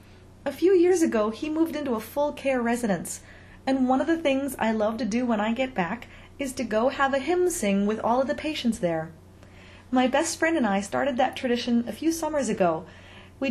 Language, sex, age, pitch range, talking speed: English, female, 30-49, 220-280 Hz, 220 wpm